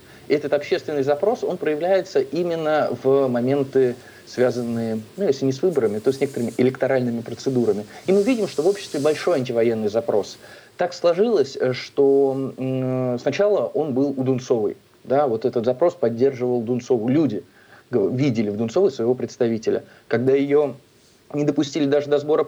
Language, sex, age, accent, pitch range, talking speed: Russian, male, 20-39, native, 125-150 Hz, 145 wpm